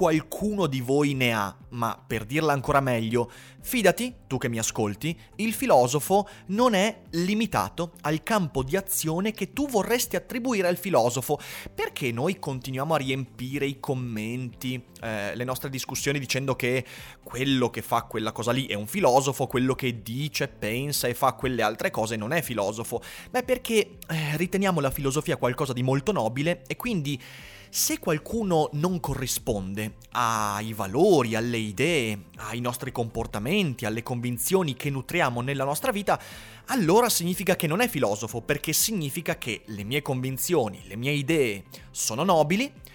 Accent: native